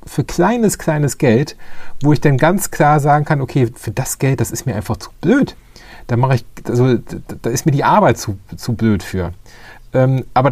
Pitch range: 120-150 Hz